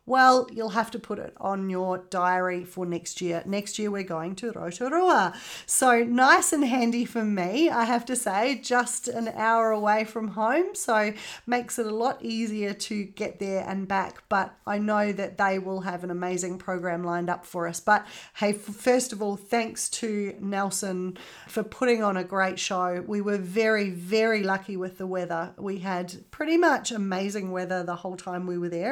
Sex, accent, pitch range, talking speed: female, Australian, 185-230 Hz, 195 wpm